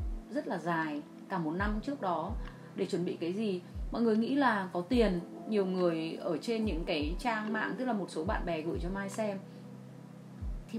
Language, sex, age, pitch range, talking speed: Vietnamese, female, 20-39, 175-220 Hz, 210 wpm